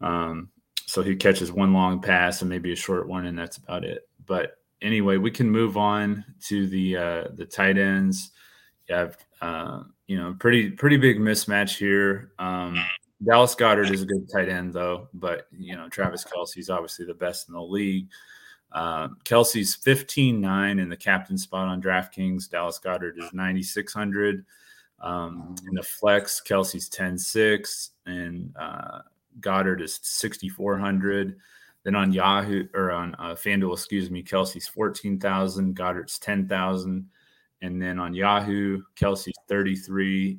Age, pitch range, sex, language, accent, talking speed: 20-39, 90-100 Hz, male, English, American, 155 wpm